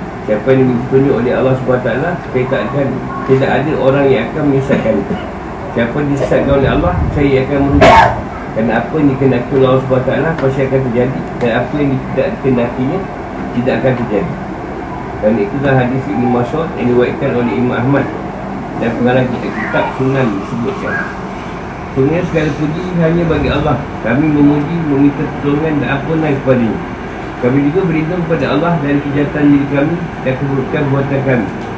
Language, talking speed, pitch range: Malay, 155 wpm, 125-145 Hz